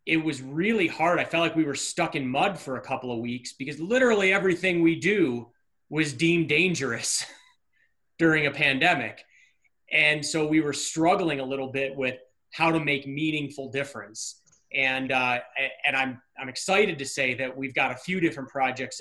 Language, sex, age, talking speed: English, male, 30-49, 180 wpm